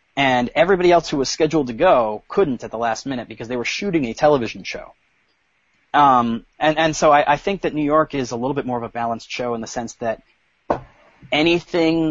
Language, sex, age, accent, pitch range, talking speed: English, male, 30-49, American, 110-130 Hz, 220 wpm